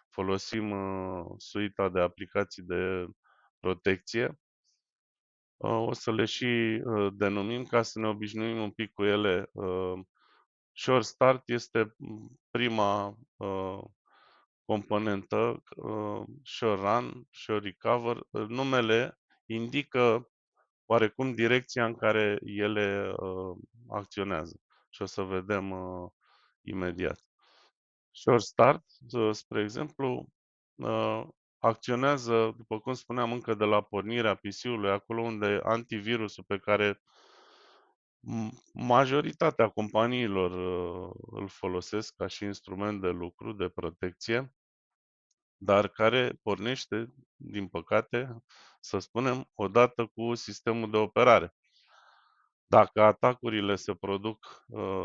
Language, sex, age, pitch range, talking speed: Romanian, male, 20-39, 100-120 Hz, 95 wpm